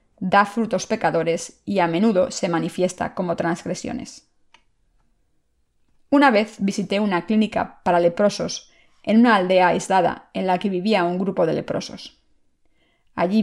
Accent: Spanish